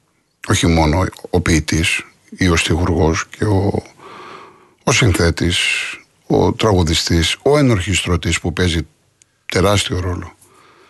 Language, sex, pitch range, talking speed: Greek, male, 85-105 Hz, 105 wpm